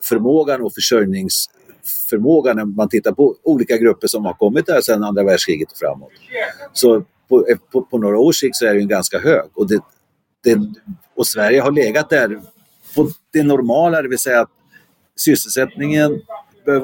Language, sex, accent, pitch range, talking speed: Swedish, male, native, 105-160 Hz, 165 wpm